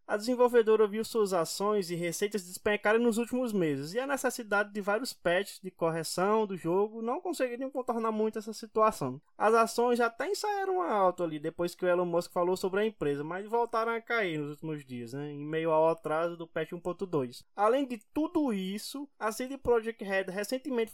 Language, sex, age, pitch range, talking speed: English, male, 20-39, 190-255 Hz, 190 wpm